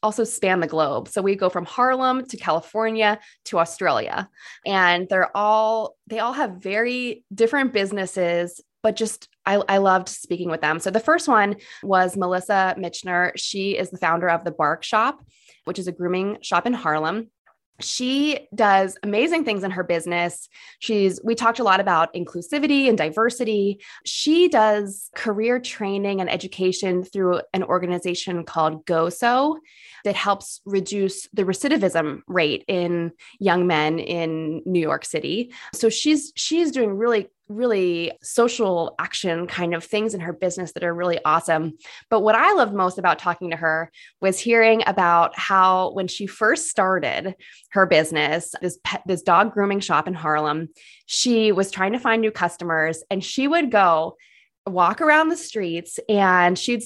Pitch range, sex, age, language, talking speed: 175-225 Hz, female, 20-39, English, 165 wpm